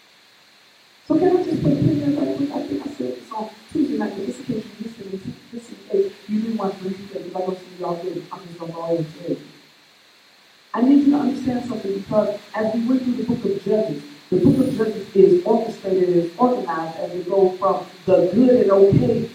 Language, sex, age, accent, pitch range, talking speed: English, female, 40-59, American, 195-280 Hz, 160 wpm